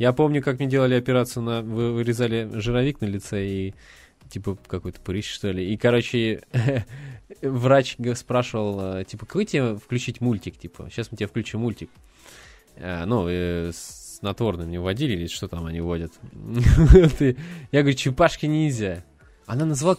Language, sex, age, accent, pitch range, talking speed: Russian, male, 20-39, native, 100-140 Hz, 140 wpm